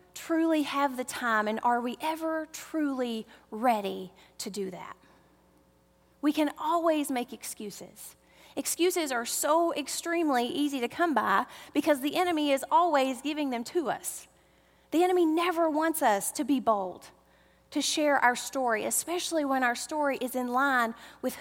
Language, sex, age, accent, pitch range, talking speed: English, female, 30-49, American, 235-315 Hz, 155 wpm